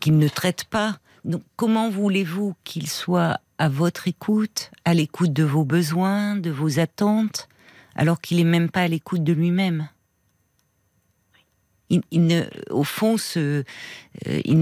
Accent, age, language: French, 50-69, French